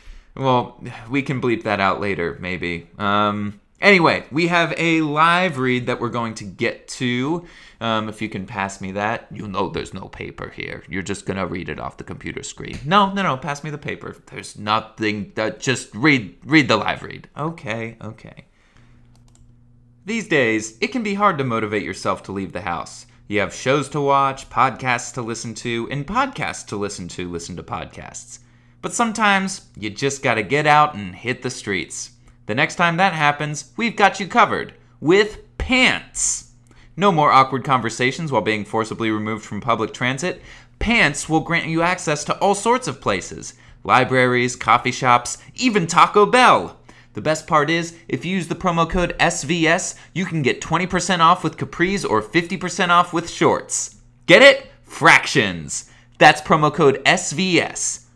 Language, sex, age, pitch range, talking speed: English, male, 20-39, 110-170 Hz, 175 wpm